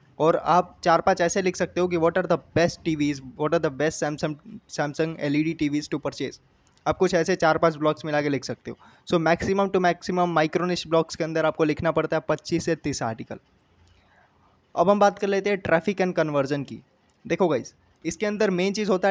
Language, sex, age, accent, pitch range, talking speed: Hindi, male, 20-39, native, 150-175 Hz, 225 wpm